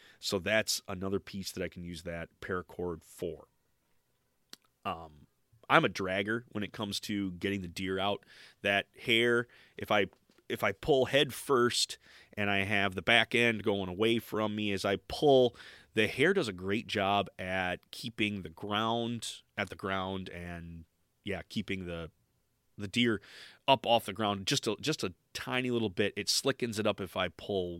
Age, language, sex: 30-49, English, male